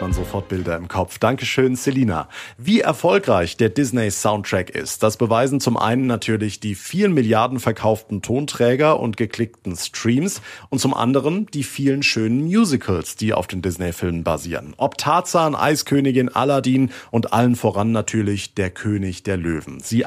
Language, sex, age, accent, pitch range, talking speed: German, male, 40-59, German, 105-140 Hz, 150 wpm